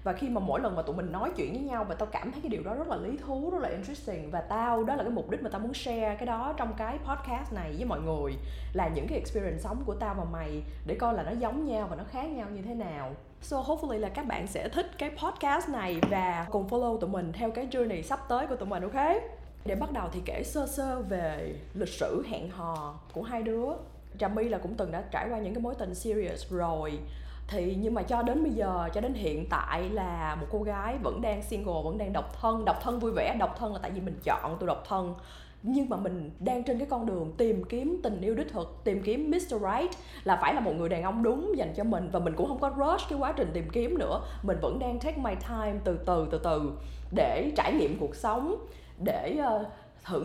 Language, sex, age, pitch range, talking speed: Vietnamese, female, 20-39, 180-255 Hz, 255 wpm